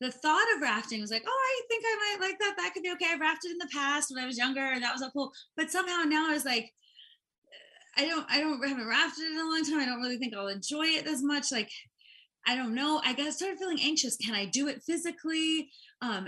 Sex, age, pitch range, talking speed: female, 20-39, 225-310 Hz, 265 wpm